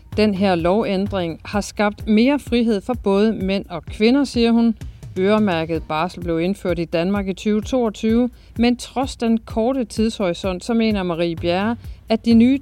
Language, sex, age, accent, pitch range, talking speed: Danish, female, 40-59, native, 170-225 Hz, 160 wpm